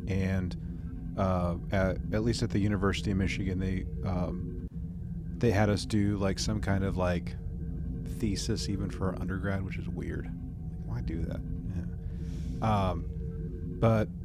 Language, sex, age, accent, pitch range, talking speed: English, male, 30-49, American, 85-105 Hz, 145 wpm